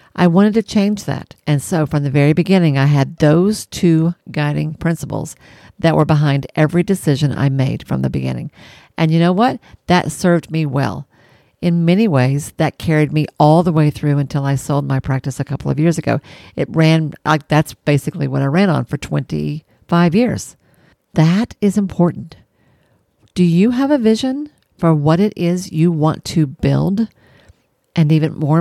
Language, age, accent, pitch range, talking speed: English, 50-69, American, 145-185 Hz, 180 wpm